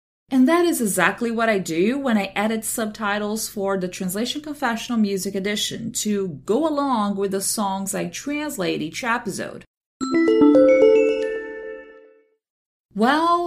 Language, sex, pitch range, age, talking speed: English, female, 185-245 Hz, 30-49, 125 wpm